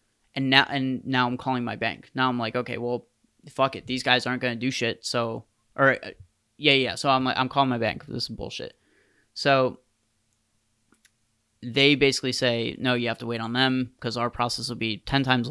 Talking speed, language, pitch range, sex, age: 210 wpm, English, 110-130 Hz, male, 20-39